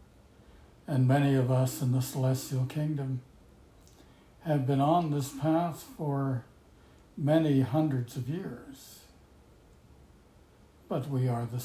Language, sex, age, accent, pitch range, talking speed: English, male, 60-79, American, 85-145 Hz, 115 wpm